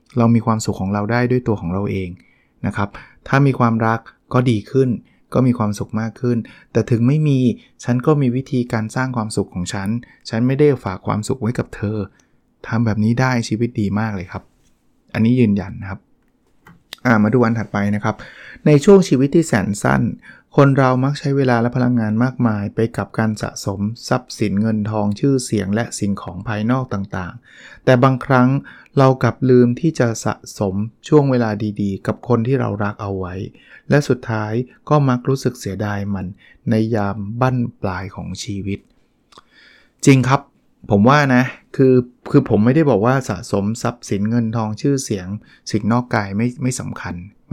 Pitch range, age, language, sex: 105-125 Hz, 20-39, Thai, male